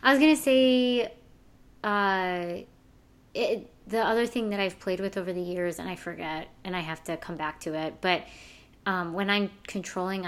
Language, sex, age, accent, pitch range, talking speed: English, female, 20-39, American, 170-195 Hz, 180 wpm